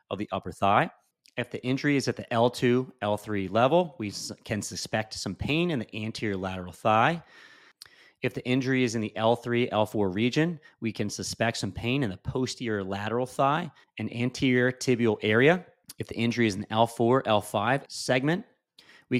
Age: 30-49